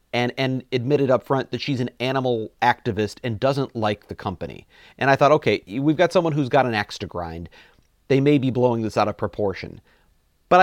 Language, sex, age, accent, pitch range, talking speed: English, male, 40-59, American, 110-140 Hz, 210 wpm